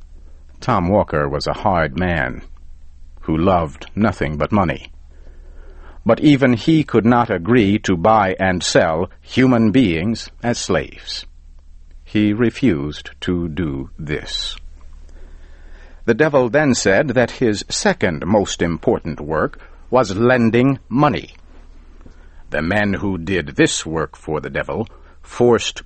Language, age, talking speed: English, 60-79, 125 wpm